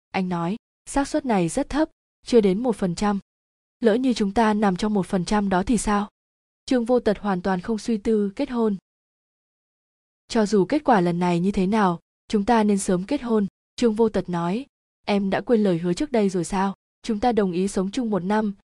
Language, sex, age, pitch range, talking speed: Vietnamese, female, 20-39, 190-230 Hz, 225 wpm